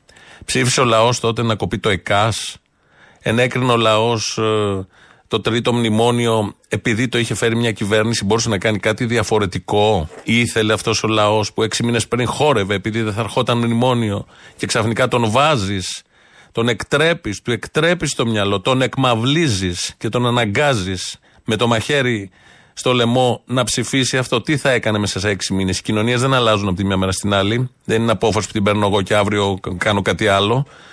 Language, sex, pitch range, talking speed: Greek, male, 105-130 Hz, 180 wpm